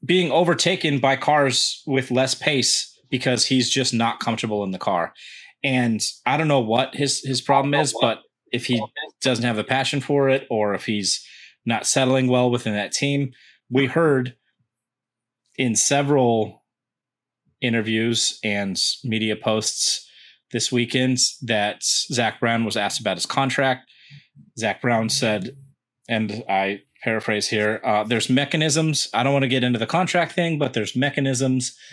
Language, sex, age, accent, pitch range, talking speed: English, male, 30-49, American, 110-135 Hz, 155 wpm